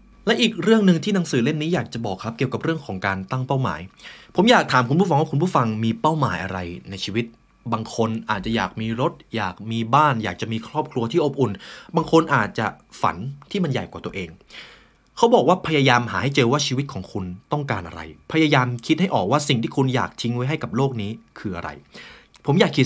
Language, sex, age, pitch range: Thai, male, 20-39, 105-150 Hz